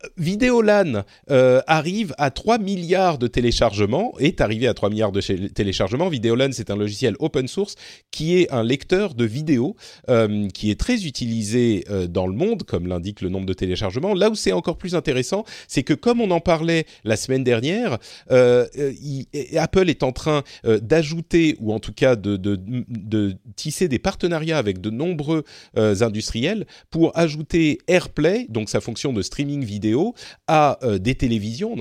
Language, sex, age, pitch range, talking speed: French, male, 40-59, 110-165 Hz, 175 wpm